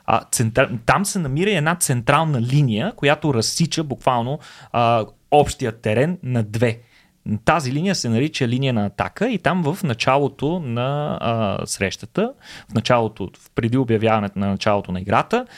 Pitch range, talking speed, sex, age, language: 120-170 Hz, 145 wpm, male, 30-49, Bulgarian